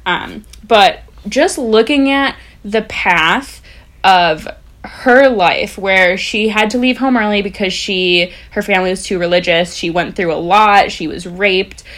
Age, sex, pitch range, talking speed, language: 10-29, female, 175-215 Hz, 160 wpm, English